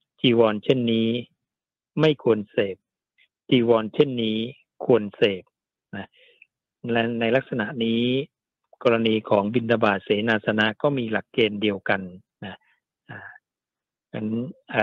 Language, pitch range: Thai, 105-130 Hz